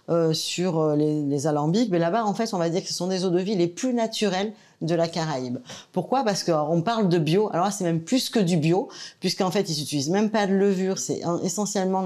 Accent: French